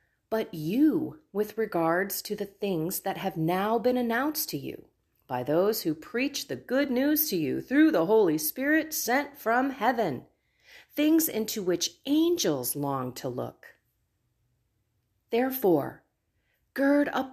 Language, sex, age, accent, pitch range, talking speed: English, female, 40-59, American, 165-260 Hz, 140 wpm